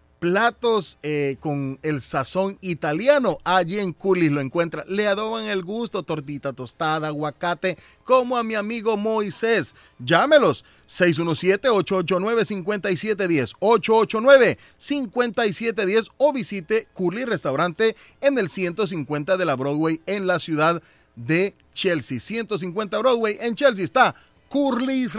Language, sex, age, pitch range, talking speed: Spanish, male, 30-49, 165-220 Hz, 110 wpm